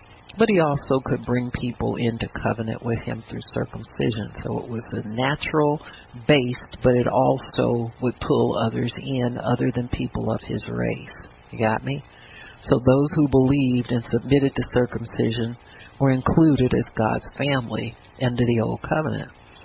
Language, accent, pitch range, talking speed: English, American, 120-145 Hz, 155 wpm